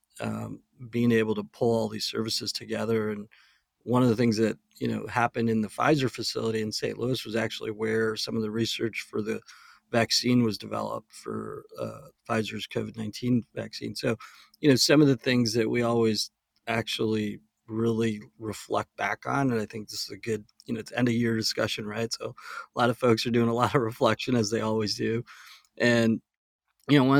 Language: English